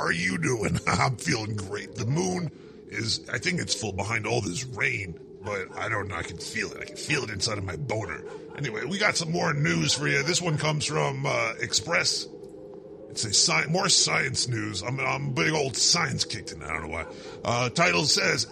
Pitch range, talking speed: 115-175 Hz, 210 wpm